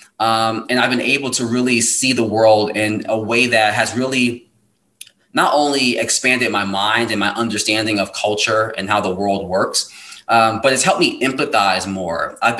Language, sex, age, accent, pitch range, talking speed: English, male, 20-39, American, 110-125 Hz, 185 wpm